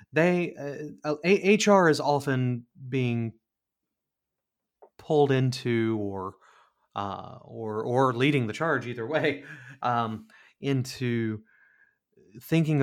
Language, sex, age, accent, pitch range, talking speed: English, male, 30-49, American, 110-145 Hz, 95 wpm